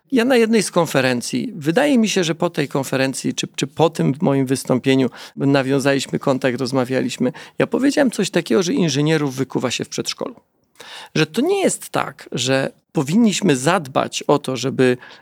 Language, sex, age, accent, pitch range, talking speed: Polish, male, 40-59, native, 135-195 Hz, 165 wpm